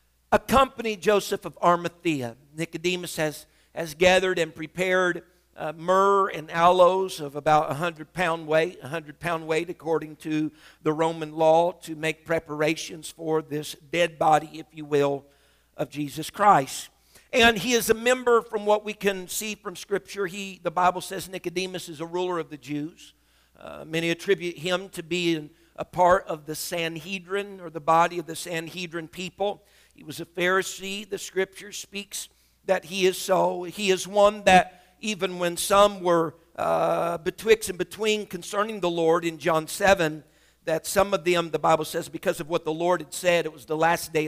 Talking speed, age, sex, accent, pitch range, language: 180 wpm, 50-69, male, American, 155-185 Hz, English